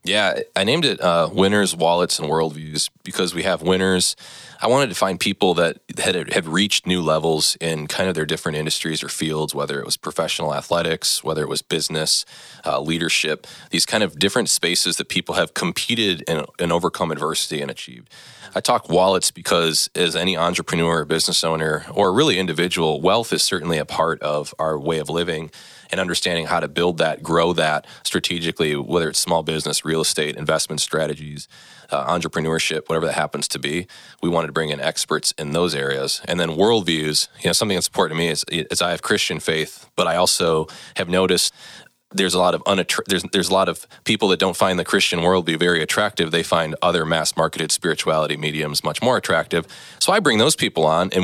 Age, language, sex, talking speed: 20-39, English, male, 200 wpm